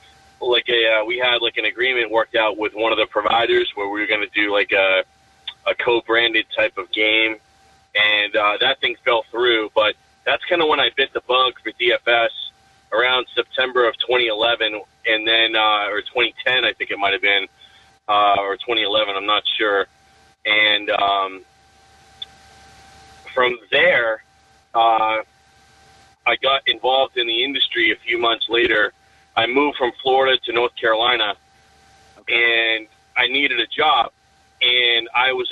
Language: English